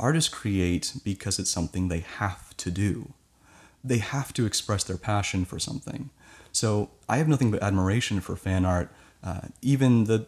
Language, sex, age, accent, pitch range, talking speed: English, male, 30-49, American, 95-110 Hz, 170 wpm